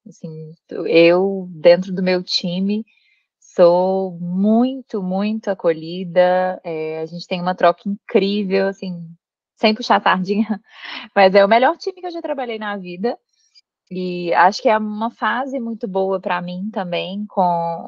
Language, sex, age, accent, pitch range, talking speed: Portuguese, female, 20-39, Brazilian, 175-220 Hz, 150 wpm